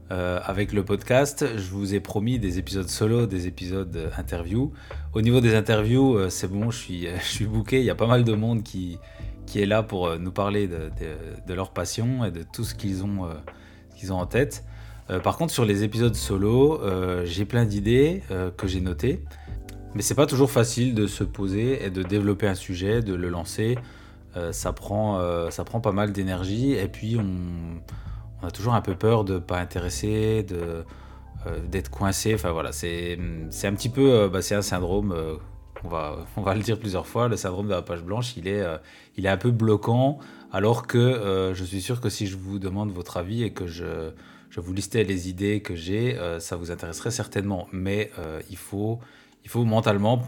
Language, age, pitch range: French, 20-39, 90-110 Hz